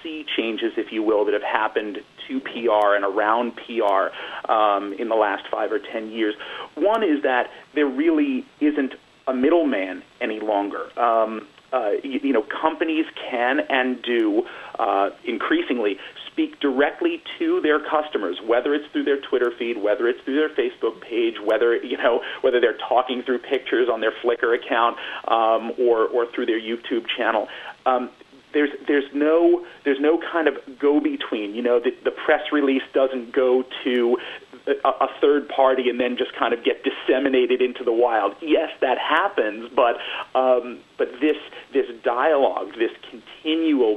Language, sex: English, male